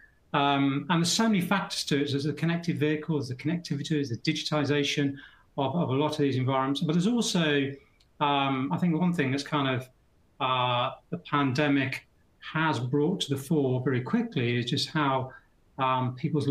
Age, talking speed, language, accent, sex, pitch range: 40-59, 175 wpm, English, British, male, 130-155 Hz